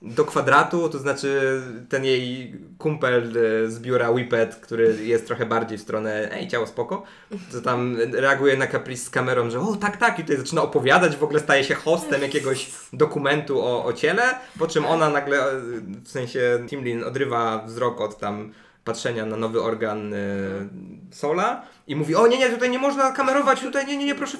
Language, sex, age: Polish, male, 20-39